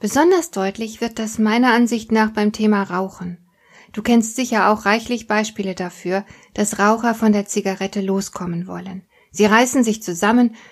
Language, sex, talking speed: German, female, 155 wpm